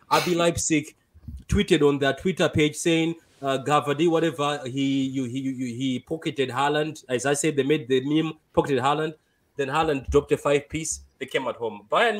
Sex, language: male, English